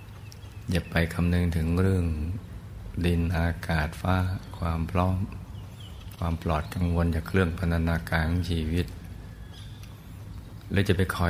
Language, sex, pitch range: Thai, male, 85-100 Hz